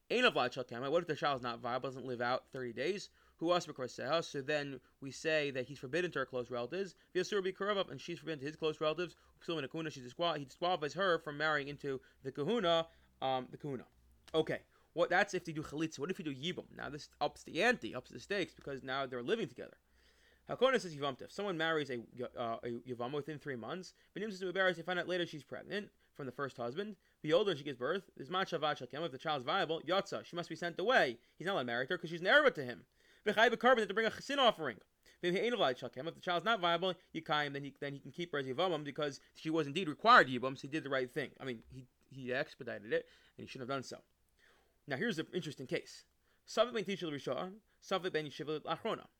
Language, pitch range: English, 135-180 Hz